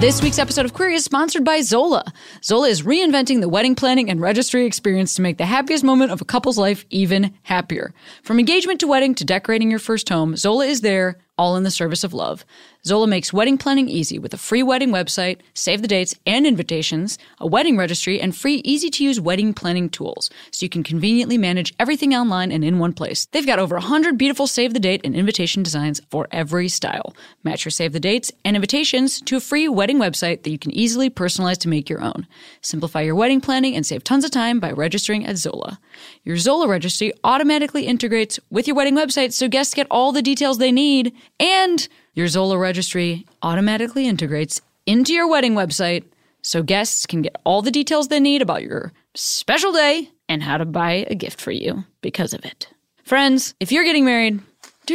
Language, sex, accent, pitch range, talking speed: English, female, American, 180-275 Hz, 200 wpm